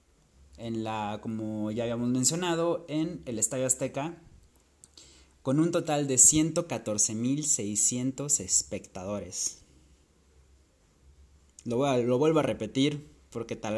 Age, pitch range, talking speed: 20-39, 85-130 Hz, 115 wpm